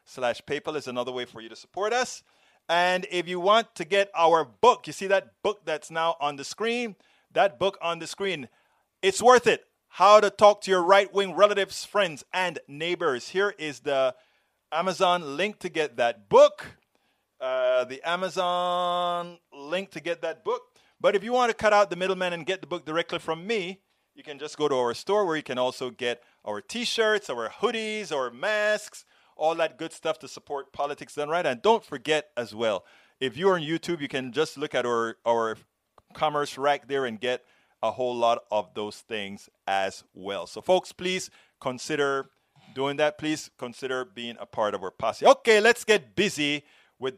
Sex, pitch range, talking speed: male, 130-195 Hz, 195 wpm